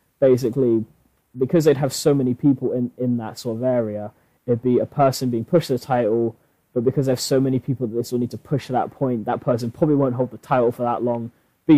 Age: 20-39